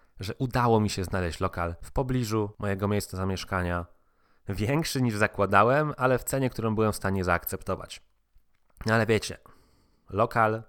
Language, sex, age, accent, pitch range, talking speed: Polish, male, 20-39, native, 95-115 Hz, 145 wpm